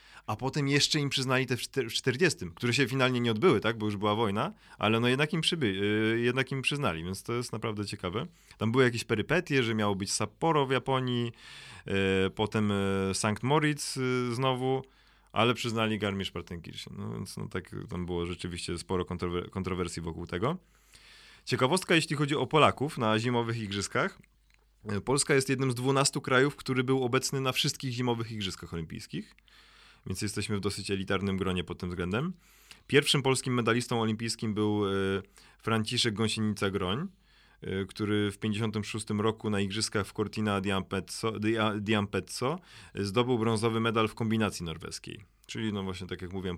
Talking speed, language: 160 wpm, Polish